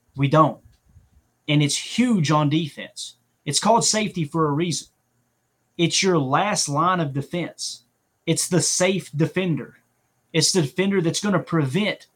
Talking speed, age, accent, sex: 150 wpm, 30-49, American, male